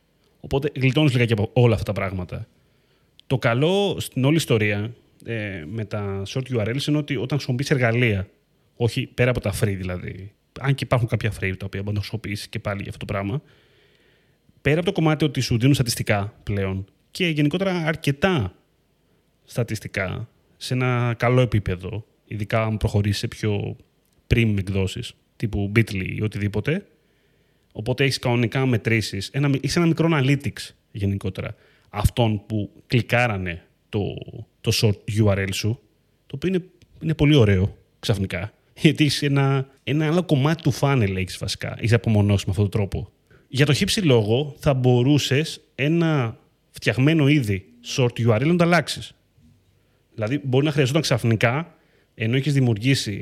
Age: 30-49